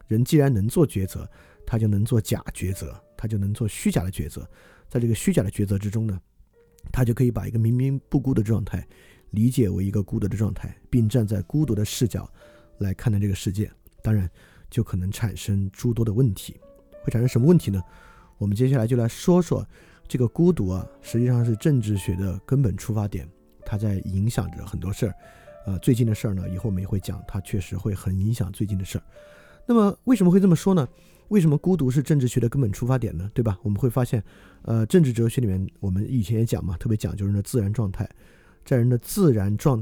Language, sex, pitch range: Chinese, male, 100-130 Hz